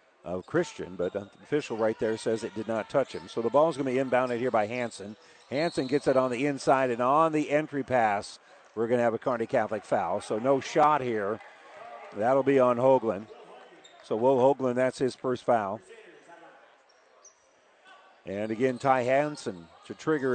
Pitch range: 125-150 Hz